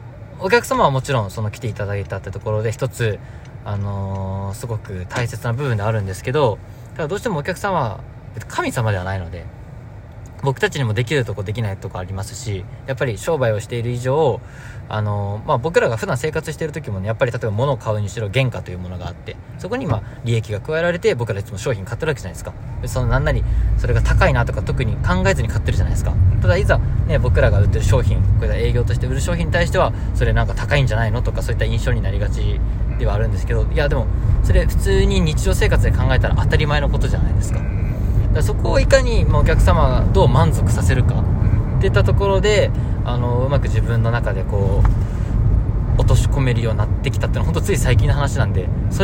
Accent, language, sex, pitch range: native, Japanese, male, 100-120 Hz